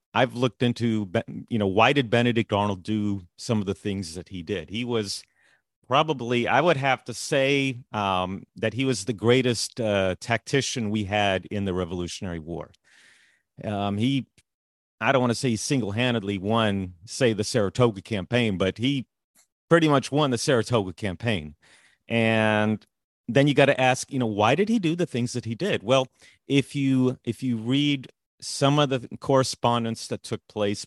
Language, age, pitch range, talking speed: English, 40-59, 100-125 Hz, 180 wpm